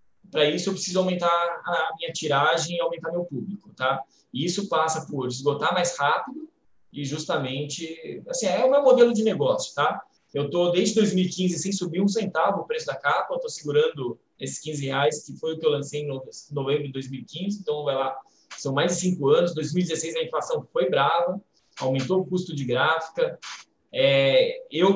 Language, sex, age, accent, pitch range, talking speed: Portuguese, male, 20-39, Brazilian, 135-195 Hz, 190 wpm